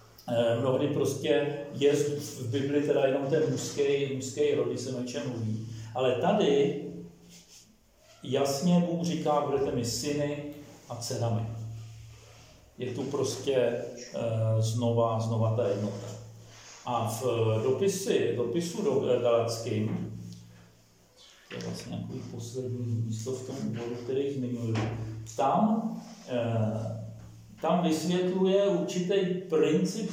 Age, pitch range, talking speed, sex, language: 50-69, 115-160 Hz, 105 wpm, male, Czech